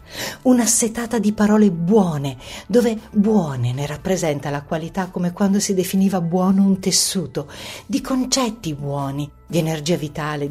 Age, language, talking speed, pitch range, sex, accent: 50-69, Italian, 135 wpm, 145-190 Hz, female, native